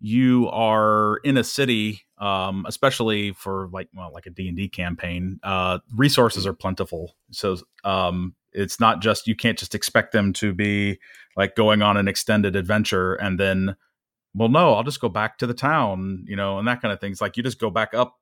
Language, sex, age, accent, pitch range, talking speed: English, male, 30-49, American, 95-115 Hz, 200 wpm